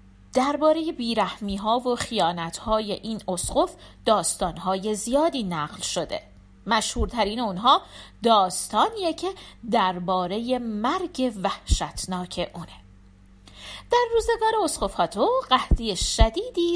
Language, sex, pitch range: Persian, female, 195-315 Hz